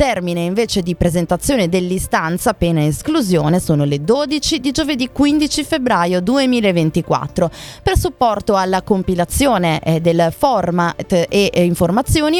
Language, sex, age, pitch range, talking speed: Italian, female, 20-39, 175-245 Hz, 110 wpm